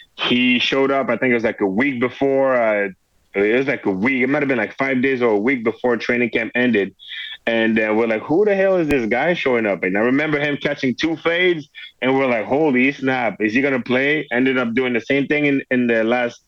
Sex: male